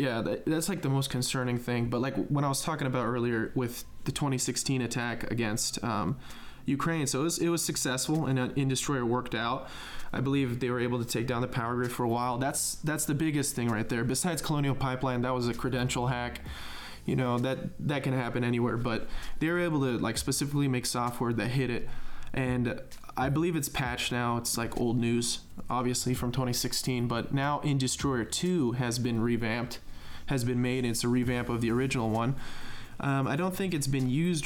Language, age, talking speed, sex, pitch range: English, 20-39, 205 wpm, male, 120-135 Hz